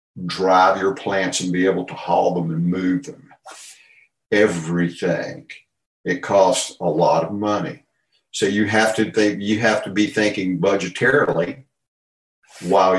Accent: American